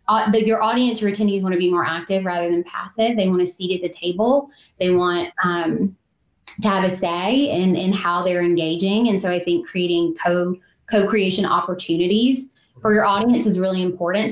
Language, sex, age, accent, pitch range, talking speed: English, female, 20-39, American, 175-215 Hz, 195 wpm